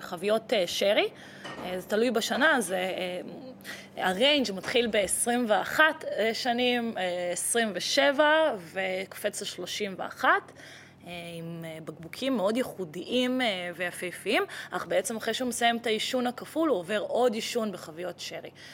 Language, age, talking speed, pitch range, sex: Hebrew, 20-39, 100 wpm, 185-255 Hz, female